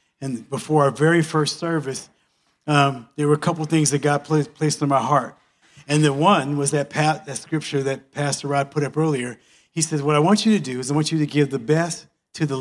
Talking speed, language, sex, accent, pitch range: 235 wpm, English, male, American, 140-165 Hz